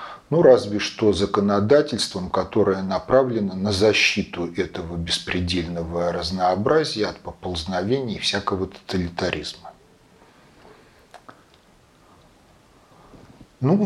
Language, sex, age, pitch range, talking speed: Russian, male, 40-59, 95-135 Hz, 75 wpm